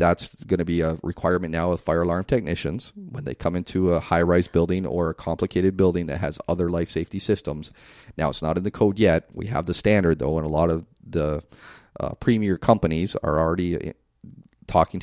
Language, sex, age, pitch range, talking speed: English, male, 40-59, 80-95 Hz, 210 wpm